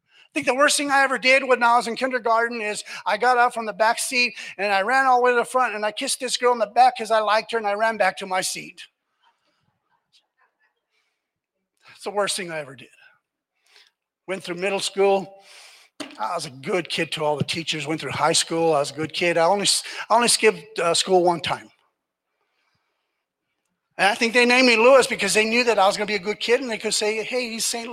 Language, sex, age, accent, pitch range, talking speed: English, male, 50-69, American, 155-225 Hz, 245 wpm